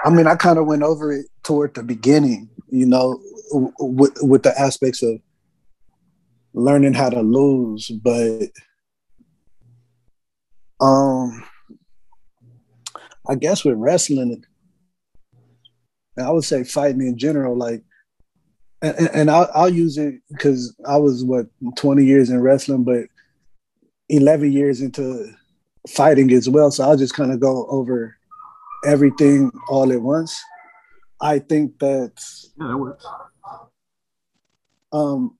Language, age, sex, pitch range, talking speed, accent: English, 30-49, male, 130-155 Hz, 120 wpm, American